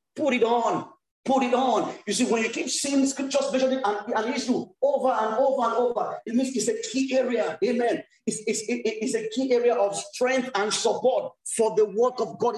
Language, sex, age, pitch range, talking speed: English, male, 40-59, 215-270 Hz, 210 wpm